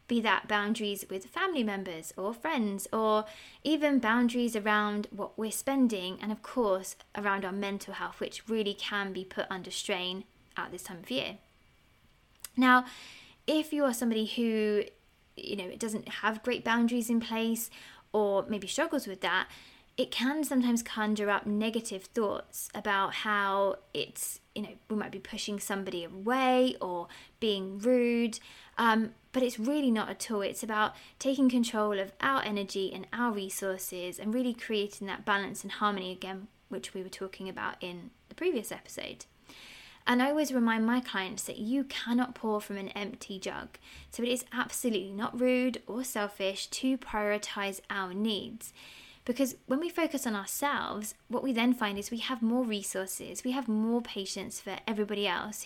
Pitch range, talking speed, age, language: 200-245 Hz, 170 wpm, 20-39, English